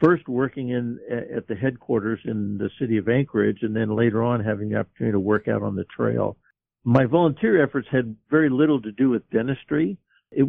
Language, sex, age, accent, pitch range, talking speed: English, male, 60-79, American, 110-125 Hz, 200 wpm